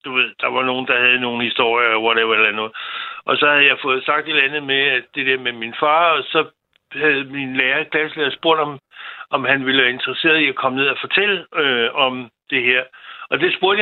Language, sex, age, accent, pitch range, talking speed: Danish, male, 60-79, native, 130-155 Hz, 220 wpm